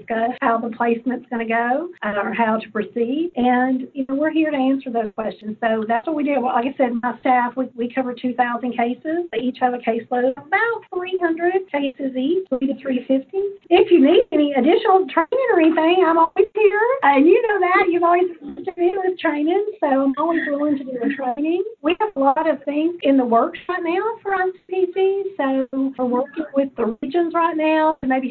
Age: 40-59